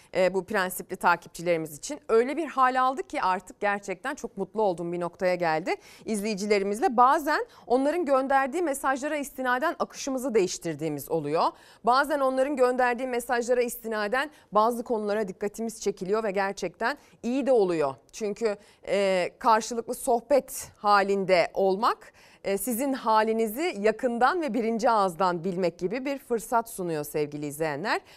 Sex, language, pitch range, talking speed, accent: female, Turkish, 185-260 Hz, 130 wpm, native